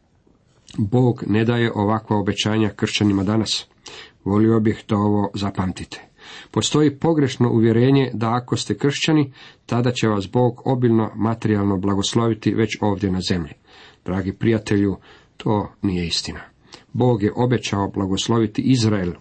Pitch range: 100-120 Hz